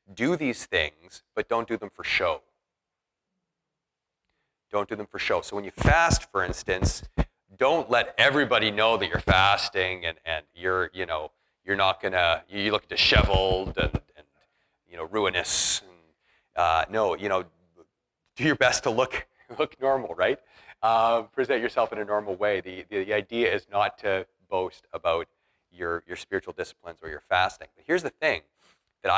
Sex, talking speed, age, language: male, 175 wpm, 40-59, English